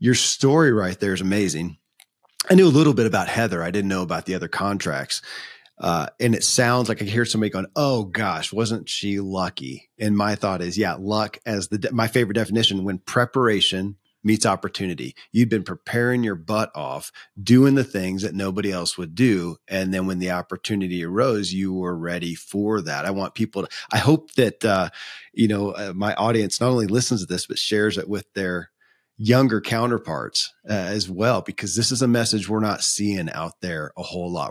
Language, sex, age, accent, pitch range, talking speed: English, male, 40-59, American, 95-115 Hz, 200 wpm